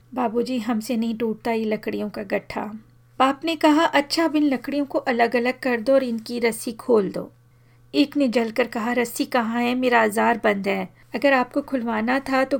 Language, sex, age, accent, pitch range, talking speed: Hindi, female, 40-59, native, 225-260 Hz, 195 wpm